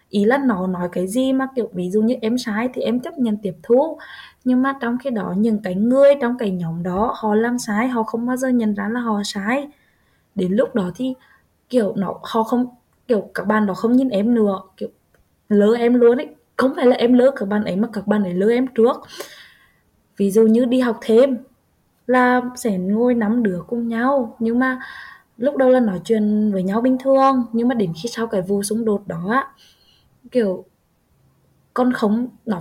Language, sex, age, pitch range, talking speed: Vietnamese, female, 10-29, 210-255 Hz, 215 wpm